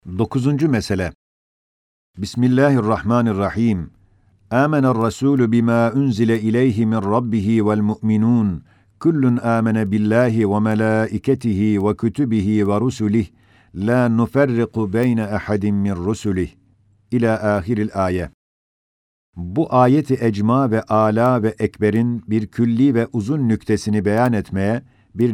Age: 50-69